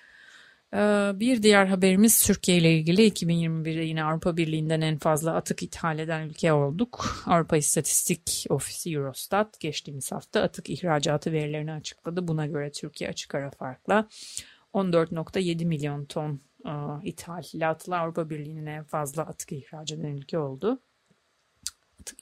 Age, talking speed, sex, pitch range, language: 30-49, 130 wpm, female, 155-195 Hz, Turkish